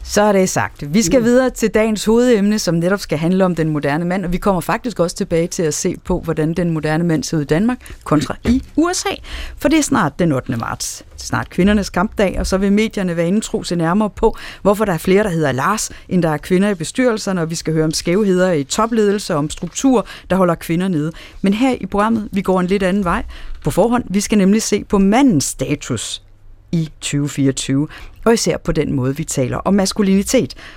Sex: female